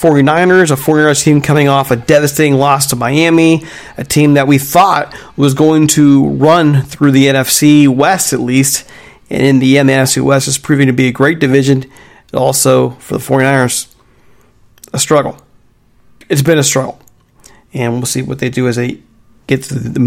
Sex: male